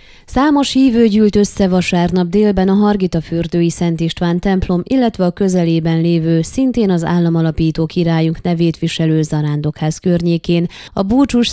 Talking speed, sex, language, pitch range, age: 135 wpm, female, Hungarian, 165-195 Hz, 20-39